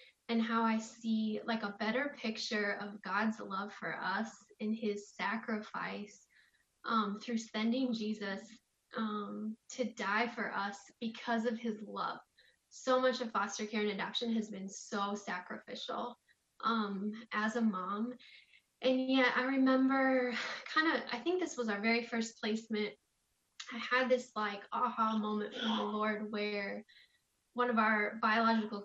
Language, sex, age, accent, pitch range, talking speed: English, female, 10-29, American, 210-245 Hz, 150 wpm